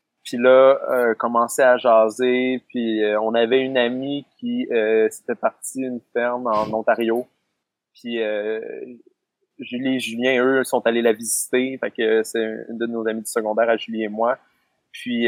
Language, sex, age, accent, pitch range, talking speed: French, male, 30-49, Canadian, 110-130 Hz, 180 wpm